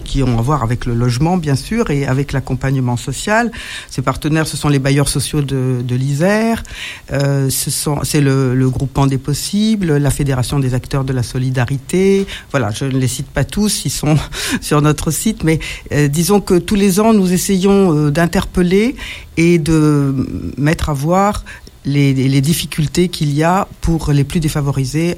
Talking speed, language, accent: 185 wpm, French, French